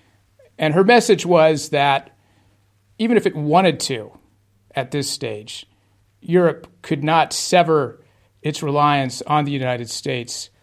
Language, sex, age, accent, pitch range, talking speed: English, male, 50-69, American, 125-165 Hz, 130 wpm